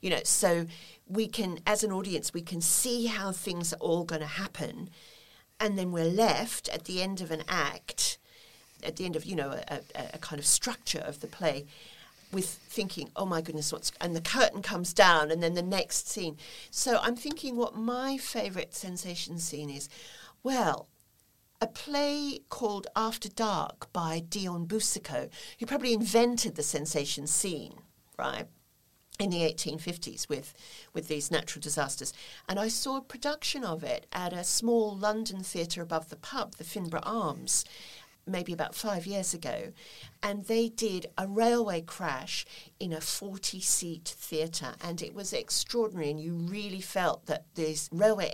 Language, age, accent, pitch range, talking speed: English, 40-59, British, 160-215 Hz, 170 wpm